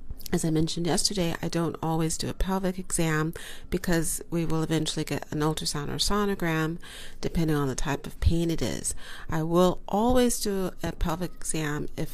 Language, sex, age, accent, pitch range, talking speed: English, female, 40-59, American, 150-180 Hz, 180 wpm